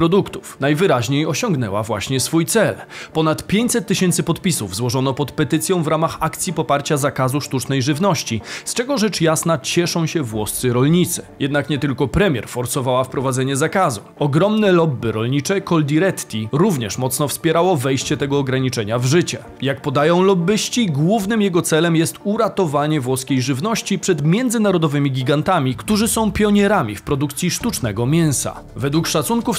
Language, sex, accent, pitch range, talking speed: Polish, male, native, 135-185 Hz, 140 wpm